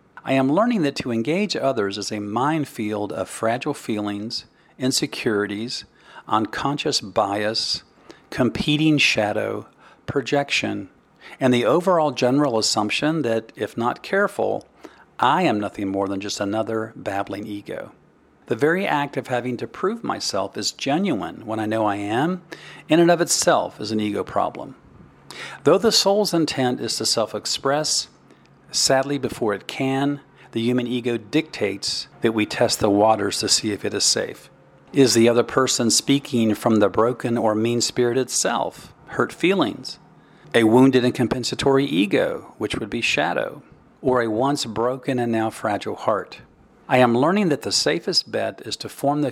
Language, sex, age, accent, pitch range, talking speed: English, male, 50-69, American, 110-140 Hz, 155 wpm